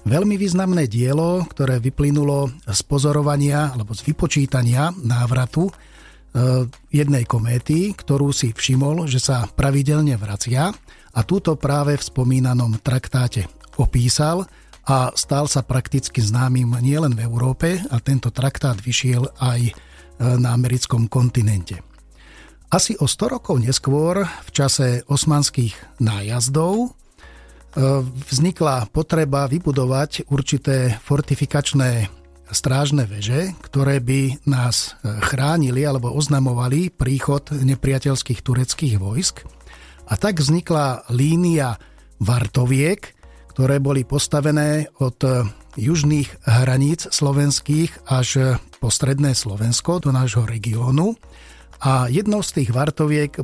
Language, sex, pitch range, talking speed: Slovak, male, 120-145 Hz, 105 wpm